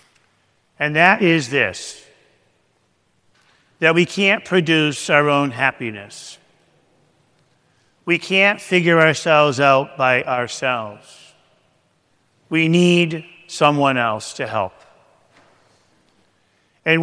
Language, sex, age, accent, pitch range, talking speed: English, male, 50-69, American, 145-175 Hz, 90 wpm